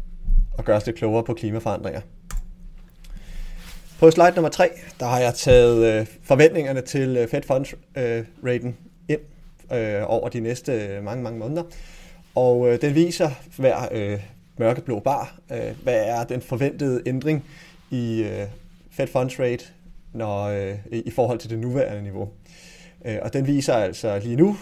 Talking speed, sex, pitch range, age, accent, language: 155 wpm, male, 115-150 Hz, 30-49, native, Danish